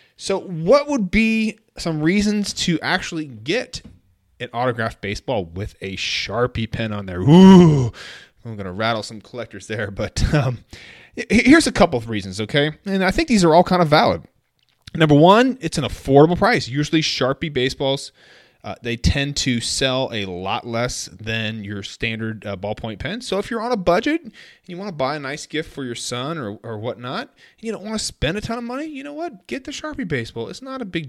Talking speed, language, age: 205 wpm, English, 20-39